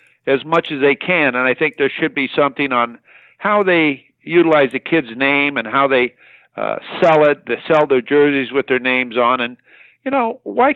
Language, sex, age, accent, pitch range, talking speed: English, male, 60-79, American, 140-180 Hz, 205 wpm